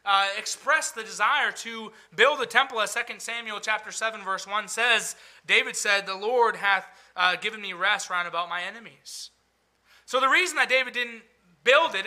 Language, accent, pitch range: English, American, 195-240 Hz